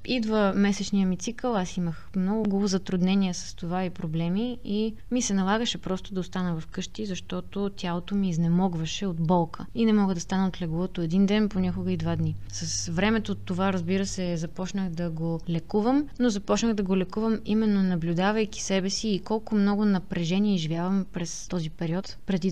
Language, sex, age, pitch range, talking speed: Bulgarian, female, 20-39, 180-210 Hz, 175 wpm